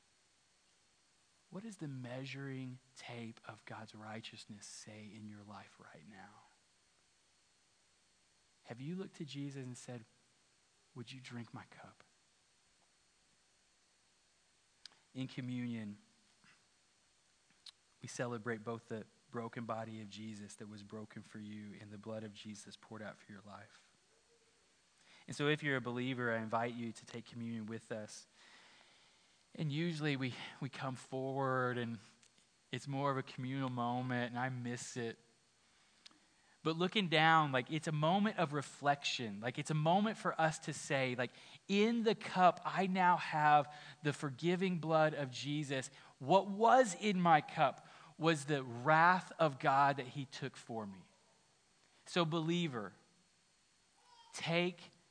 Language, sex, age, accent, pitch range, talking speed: English, male, 20-39, American, 115-155 Hz, 140 wpm